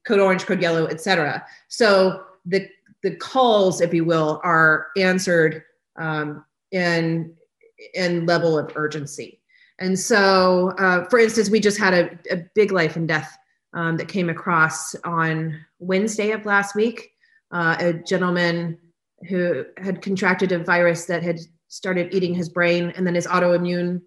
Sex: female